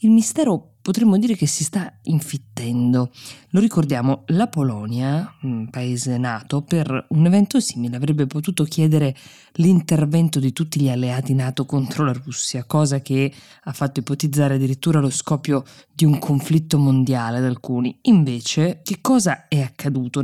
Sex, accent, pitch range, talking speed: female, native, 130-160 Hz, 150 wpm